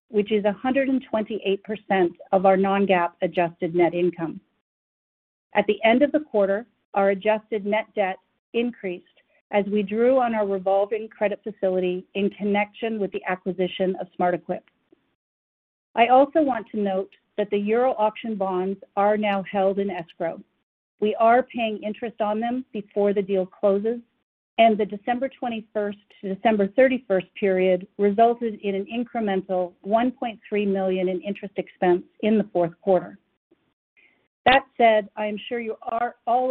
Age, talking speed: 50-69, 145 wpm